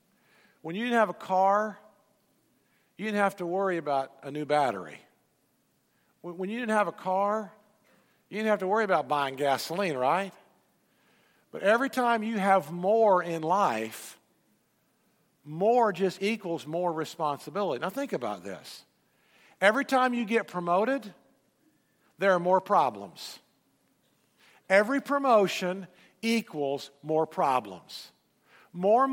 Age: 50-69